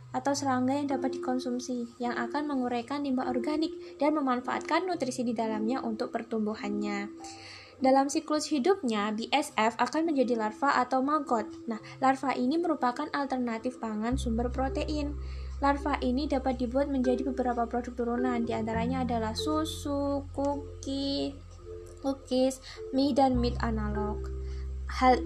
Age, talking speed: 10-29, 125 wpm